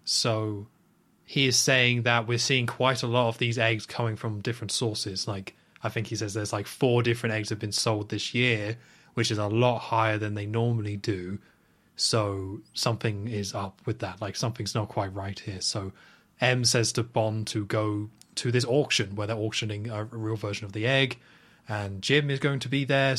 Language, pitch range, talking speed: English, 110-125 Hz, 205 wpm